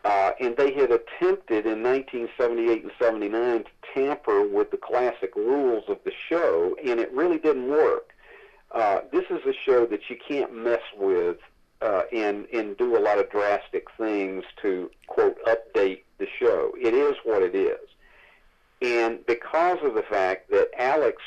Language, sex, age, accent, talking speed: English, male, 50-69, American, 165 wpm